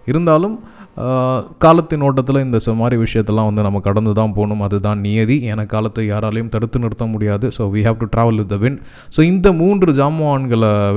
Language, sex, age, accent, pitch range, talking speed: Tamil, male, 20-39, native, 105-130 Hz, 170 wpm